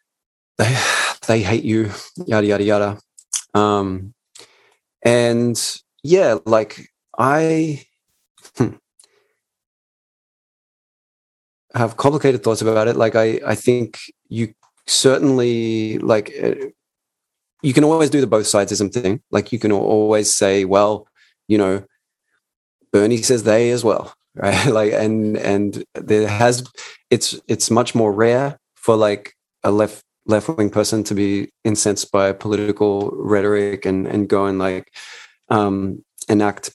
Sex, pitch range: male, 100-125 Hz